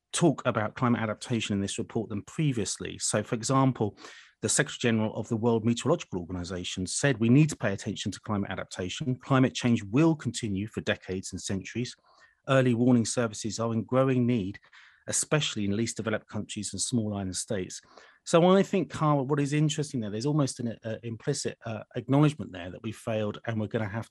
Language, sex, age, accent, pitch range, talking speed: English, male, 30-49, British, 100-130 Hz, 190 wpm